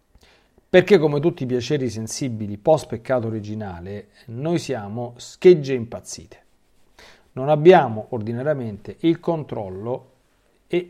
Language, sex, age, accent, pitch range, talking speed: Italian, male, 40-59, native, 115-165 Hz, 105 wpm